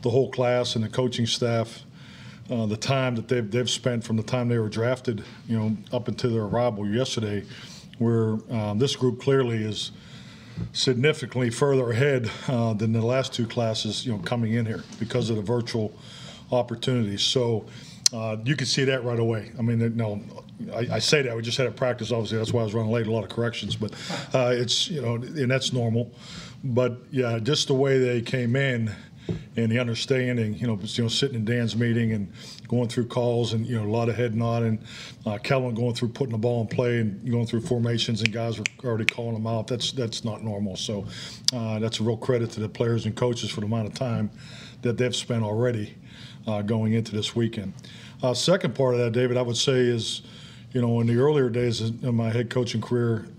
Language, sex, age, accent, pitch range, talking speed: English, male, 40-59, American, 115-125 Hz, 215 wpm